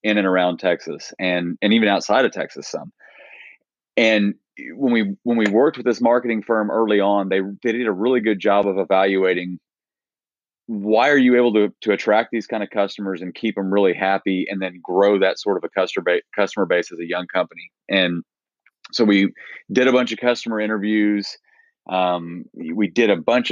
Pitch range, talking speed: 95-110 Hz, 195 wpm